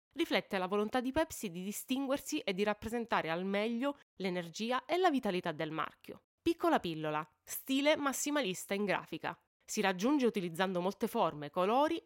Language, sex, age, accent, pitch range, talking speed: Italian, female, 20-39, native, 185-255 Hz, 150 wpm